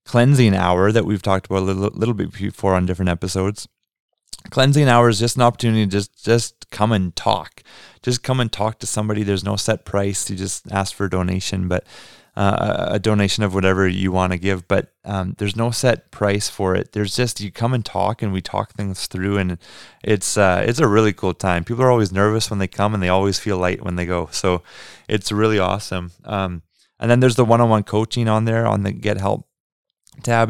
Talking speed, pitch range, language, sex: 220 wpm, 95-110 Hz, English, male